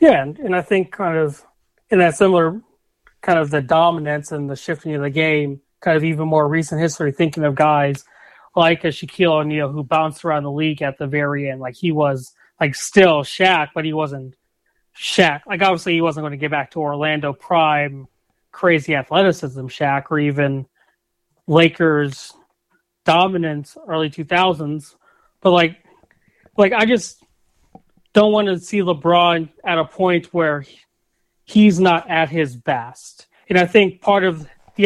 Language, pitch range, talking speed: English, 150-185 Hz, 165 wpm